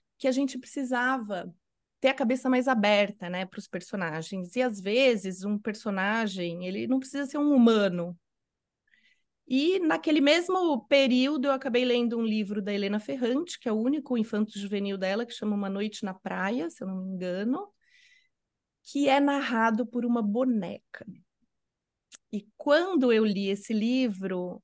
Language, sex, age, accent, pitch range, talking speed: Portuguese, female, 30-49, Brazilian, 200-260 Hz, 155 wpm